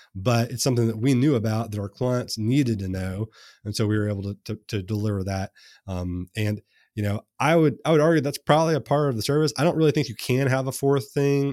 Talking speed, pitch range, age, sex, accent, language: 255 wpm, 95-120 Hz, 30-49, male, American, English